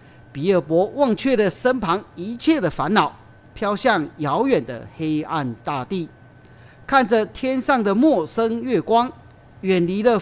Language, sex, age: Chinese, male, 40-59